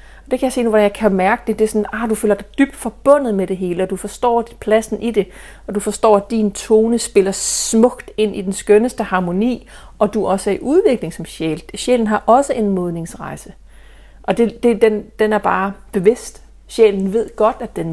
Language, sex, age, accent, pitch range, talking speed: Danish, female, 40-59, native, 195-230 Hz, 225 wpm